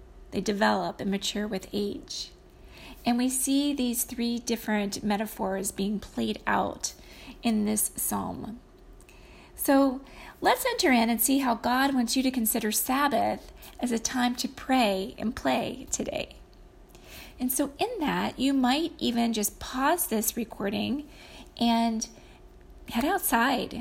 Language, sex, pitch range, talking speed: English, female, 220-260 Hz, 135 wpm